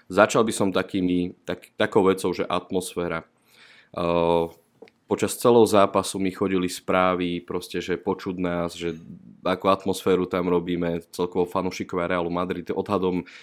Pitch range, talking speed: 85-95 Hz, 135 wpm